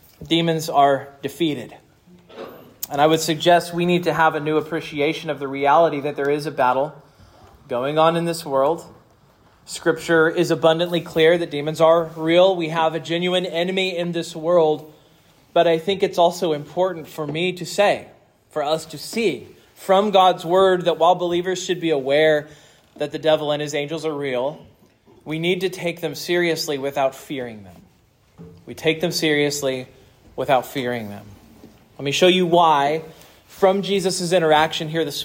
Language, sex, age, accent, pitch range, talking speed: English, male, 20-39, American, 150-180 Hz, 170 wpm